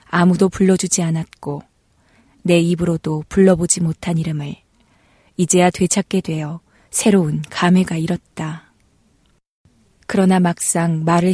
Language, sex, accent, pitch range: Korean, female, native, 160-190 Hz